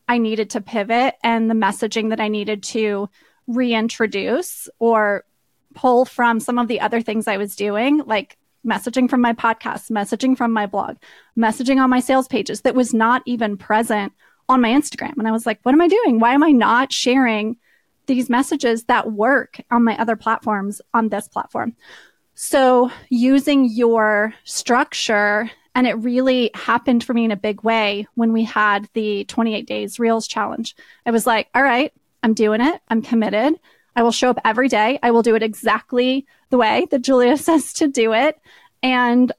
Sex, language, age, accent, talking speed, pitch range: female, English, 20-39, American, 185 wpm, 220-255 Hz